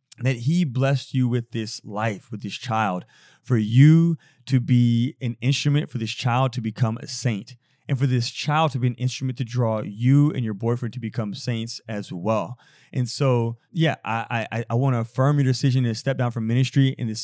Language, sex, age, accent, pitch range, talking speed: English, male, 30-49, American, 115-140 Hz, 210 wpm